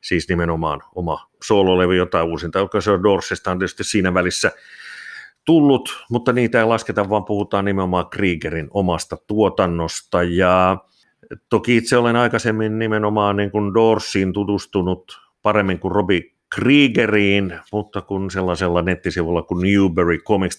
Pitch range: 90-110 Hz